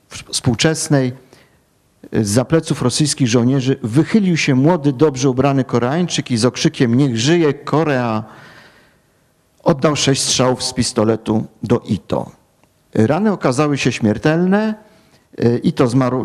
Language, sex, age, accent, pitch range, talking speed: Polish, male, 50-69, native, 115-145 Hz, 110 wpm